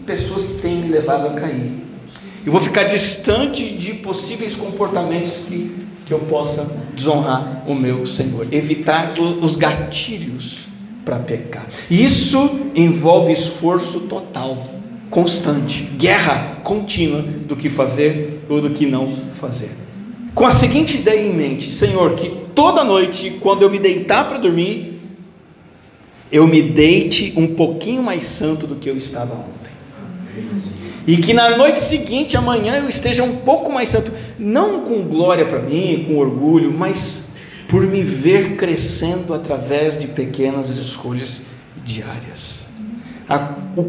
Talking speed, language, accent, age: 135 wpm, Portuguese, Brazilian, 50-69